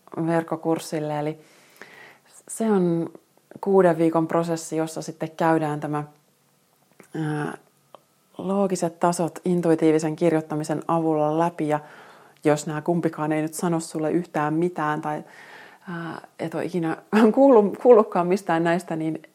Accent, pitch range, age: native, 155-180 Hz, 30-49